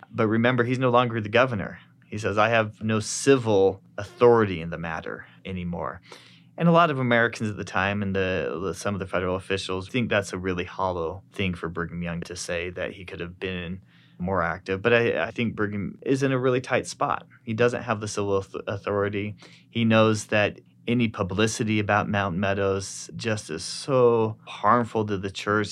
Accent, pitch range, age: American, 95-120 Hz, 30-49